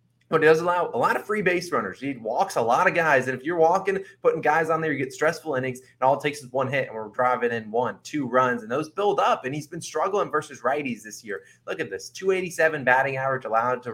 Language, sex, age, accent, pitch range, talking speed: English, male, 20-39, American, 120-165 Hz, 265 wpm